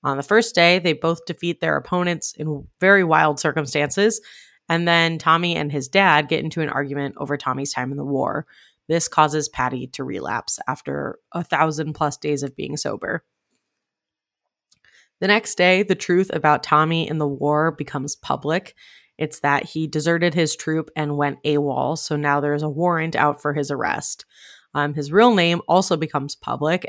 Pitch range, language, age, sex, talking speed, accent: 145-170 Hz, English, 20-39, female, 175 wpm, American